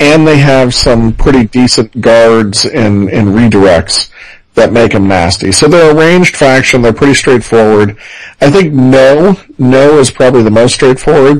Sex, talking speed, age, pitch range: male, 160 wpm, 40-59, 110-135 Hz